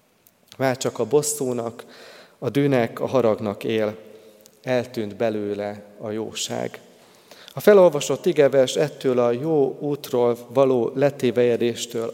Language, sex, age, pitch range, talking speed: Hungarian, male, 30-49, 110-135 Hz, 110 wpm